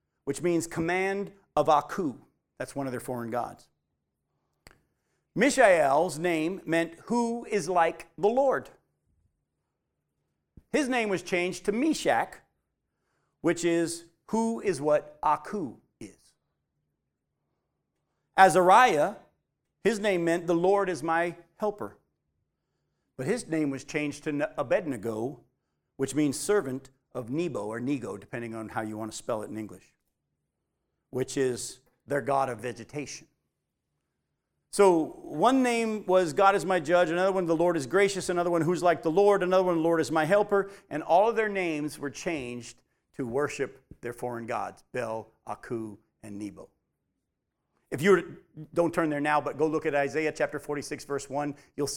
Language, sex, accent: English, male, American